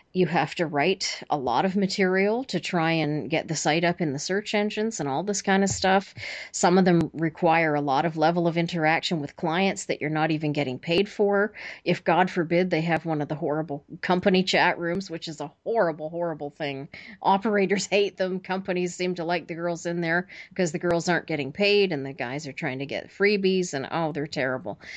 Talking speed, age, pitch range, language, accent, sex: 220 wpm, 40-59, 155-185 Hz, English, American, female